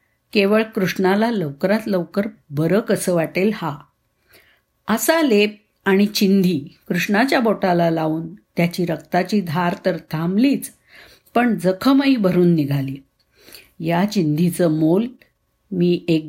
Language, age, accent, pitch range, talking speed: Marathi, 50-69, native, 165-215 Hz, 105 wpm